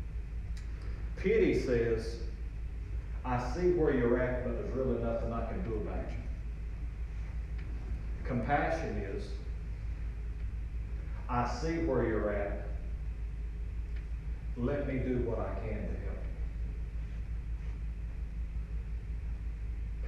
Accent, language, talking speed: American, English, 95 wpm